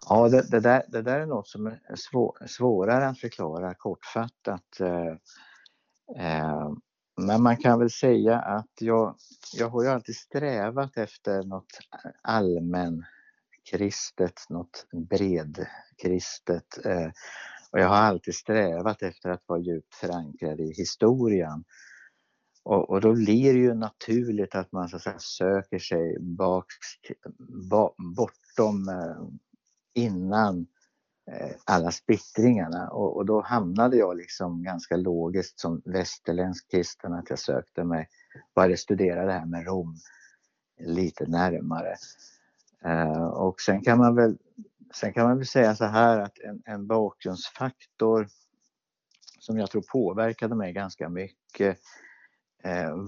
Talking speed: 125 wpm